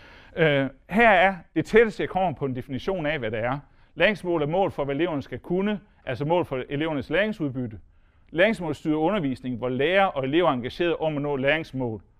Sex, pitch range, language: male, 125-170 Hz, English